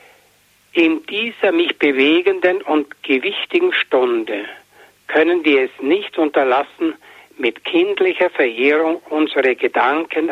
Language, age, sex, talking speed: German, 60-79, male, 100 wpm